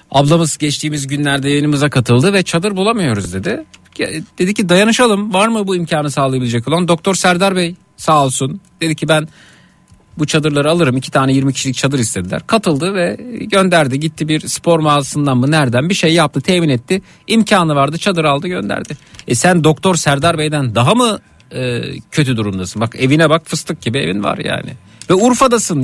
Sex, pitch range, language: male, 135-175 Hz, Turkish